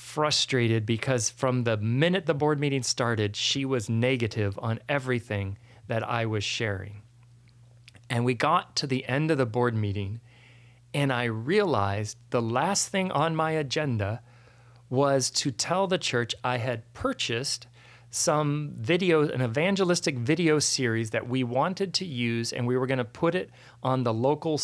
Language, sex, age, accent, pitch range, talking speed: English, male, 40-59, American, 120-150 Hz, 160 wpm